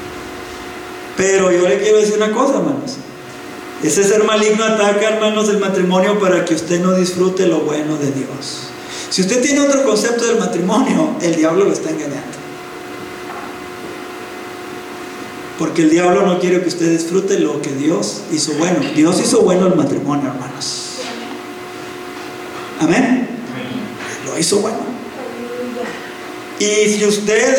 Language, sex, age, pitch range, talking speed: Spanish, male, 40-59, 180-265 Hz, 135 wpm